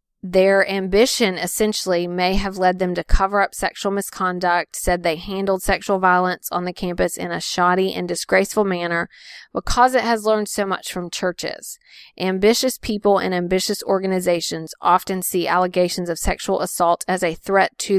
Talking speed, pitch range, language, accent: 165 wpm, 180-215 Hz, English, American